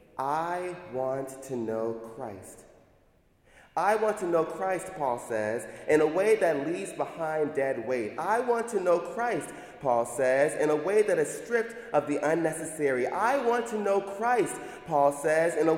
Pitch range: 130-200 Hz